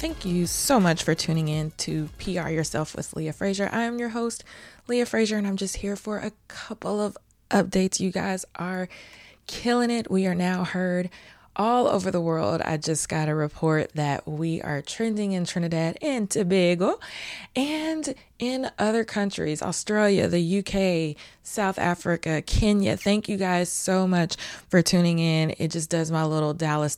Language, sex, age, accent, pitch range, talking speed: English, female, 20-39, American, 150-185 Hz, 175 wpm